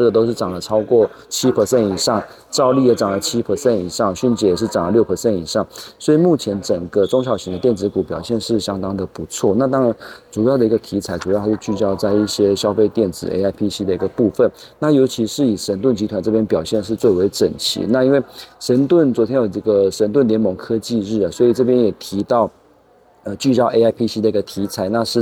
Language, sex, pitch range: Chinese, male, 100-120 Hz